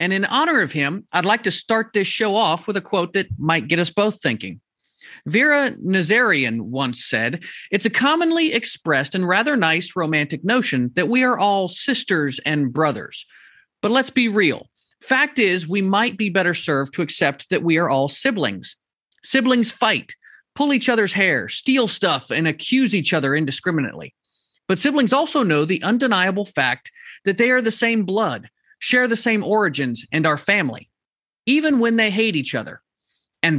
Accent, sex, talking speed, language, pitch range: American, male, 175 wpm, English, 150-220 Hz